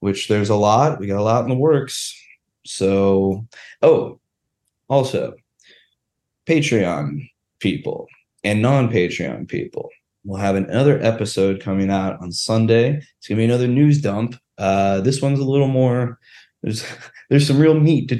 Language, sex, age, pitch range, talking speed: English, male, 20-39, 95-125 Hz, 150 wpm